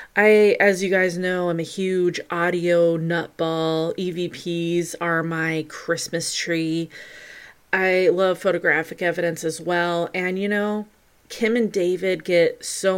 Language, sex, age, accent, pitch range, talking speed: English, female, 30-49, American, 165-210 Hz, 135 wpm